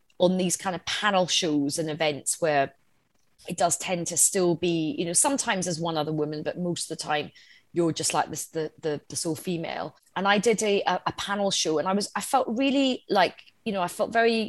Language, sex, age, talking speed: English, female, 20-39, 225 wpm